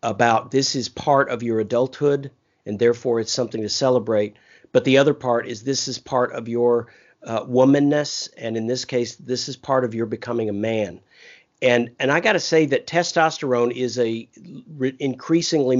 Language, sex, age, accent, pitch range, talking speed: English, male, 50-69, American, 115-130 Hz, 180 wpm